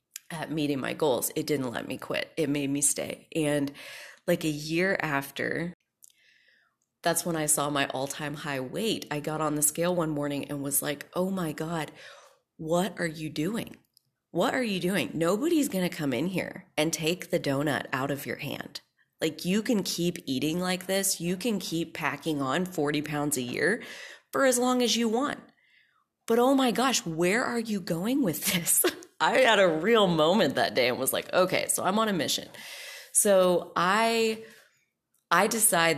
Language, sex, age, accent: English, female, 20-39, American